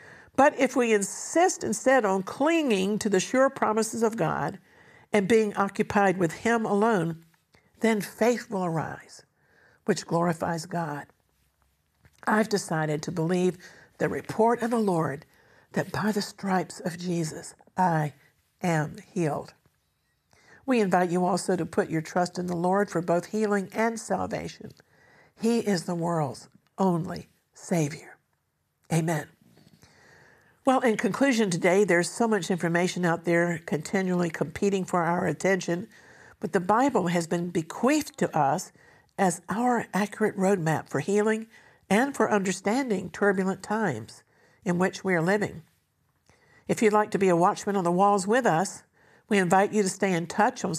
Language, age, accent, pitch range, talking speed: English, 60-79, American, 170-215 Hz, 150 wpm